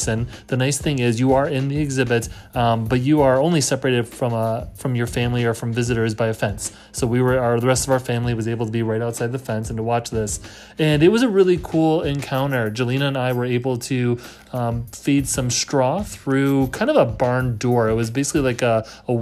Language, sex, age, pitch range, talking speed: English, male, 30-49, 120-140 Hz, 235 wpm